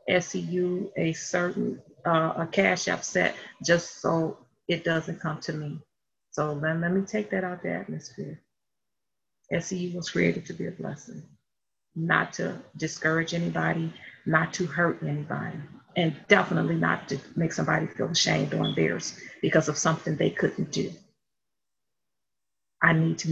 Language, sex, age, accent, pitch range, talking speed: English, female, 40-59, American, 160-210 Hz, 145 wpm